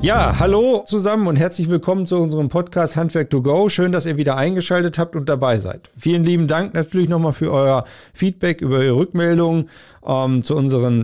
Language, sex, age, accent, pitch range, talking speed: German, male, 50-69, German, 125-165 Hz, 190 wpm